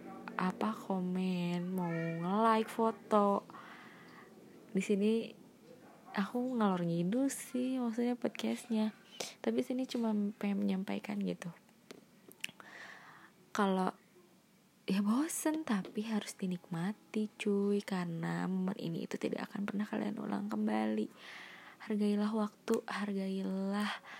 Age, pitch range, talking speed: 20-39, 190-215 Hz, 95 wpm